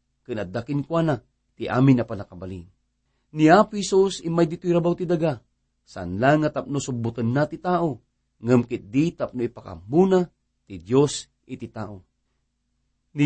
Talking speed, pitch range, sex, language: 125 wpm, 120-170 Hz, male, English